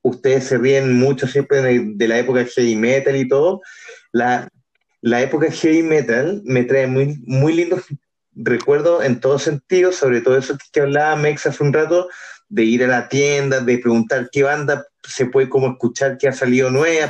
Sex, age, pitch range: male, 30-49, 120-145 Hz